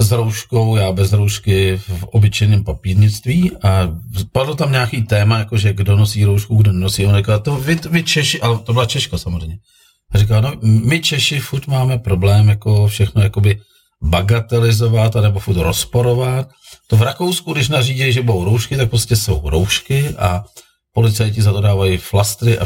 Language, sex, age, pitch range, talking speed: Czech, male, 40-59, 95-115 Hz, 170 wpm